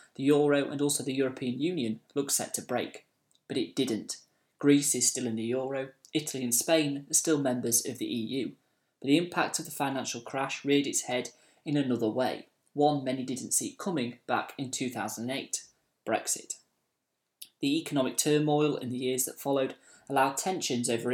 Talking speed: 175 wpm